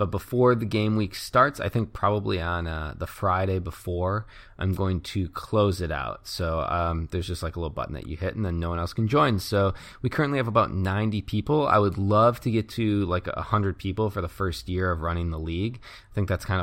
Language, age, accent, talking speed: English, 20-39, American, 240 wpm